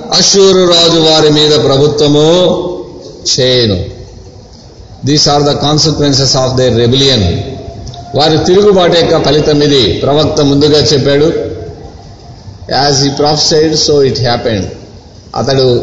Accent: native